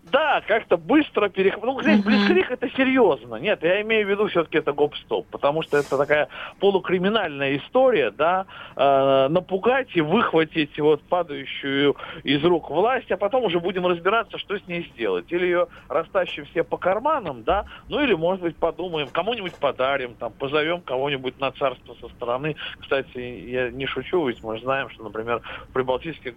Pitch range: 135-180 Hz